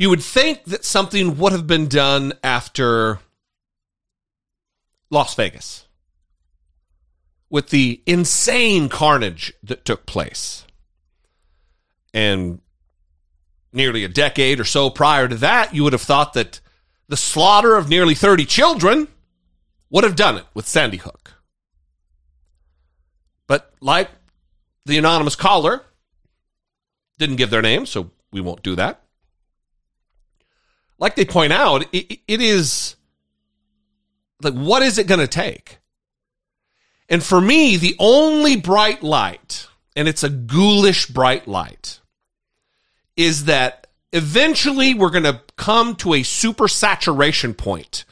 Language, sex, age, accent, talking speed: English, male, 40-59, American, 120 wpm